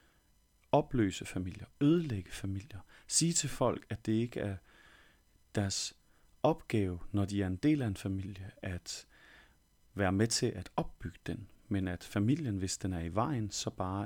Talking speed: 160 wpm